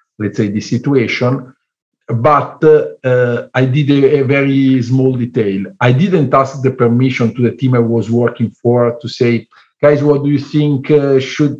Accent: Italian